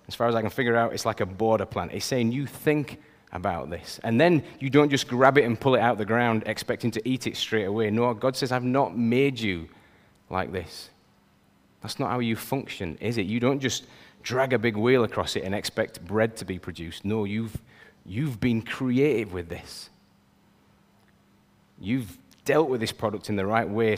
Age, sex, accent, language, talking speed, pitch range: 30-49, male, British, English, 215 wpm, 100-120 Hz